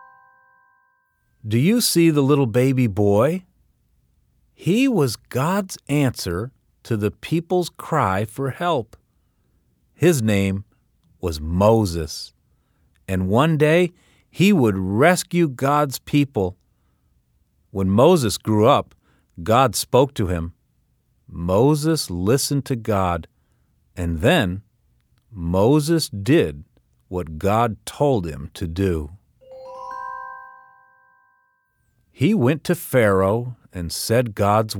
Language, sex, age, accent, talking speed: English, male, 40-59, American, 100 wpm